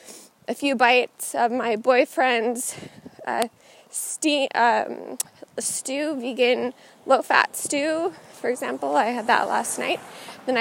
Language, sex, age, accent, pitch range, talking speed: English, female, 20-39, American, 245-300 Hz, 115 wpm